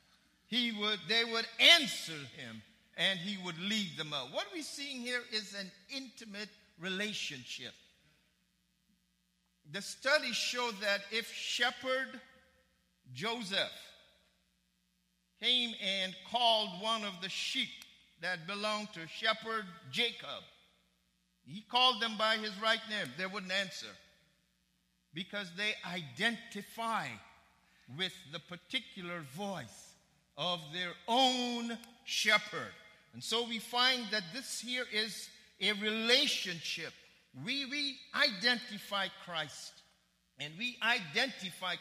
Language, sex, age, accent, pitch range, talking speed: English, male, 50-69, American, 180-240 Hz, 110 wpm